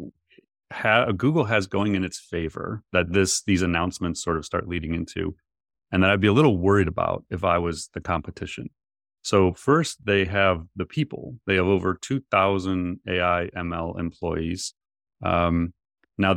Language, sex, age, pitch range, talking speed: English, male, 30-49, 85-100 Hz, 160 wpm